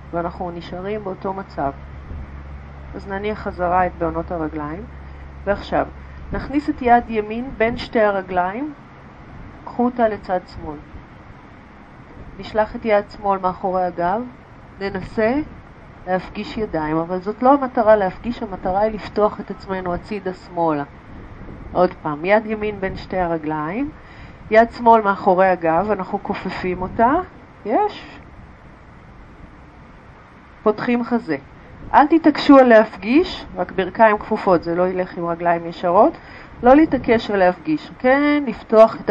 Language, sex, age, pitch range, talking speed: Hebrew, female, 40-59, 180-230 Hz, 125 wpm